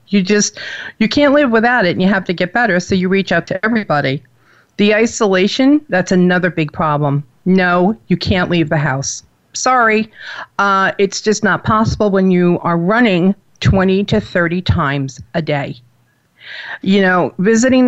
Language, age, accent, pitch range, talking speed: English, 50-69, American, 160-205 Hz, 165 wpm